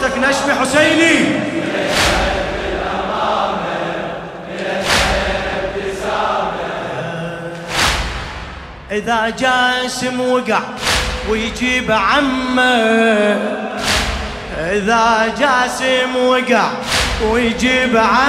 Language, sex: Arabic, male